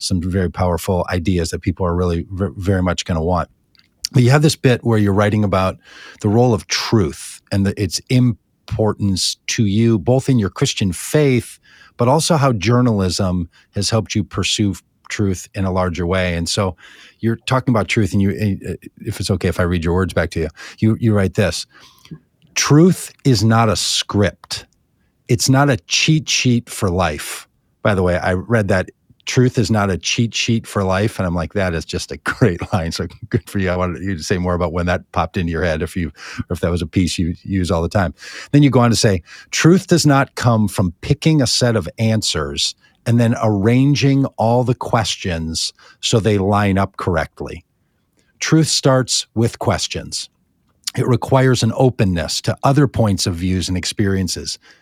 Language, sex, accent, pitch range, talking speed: English, male, American, 90-120 Hz, 195 wpm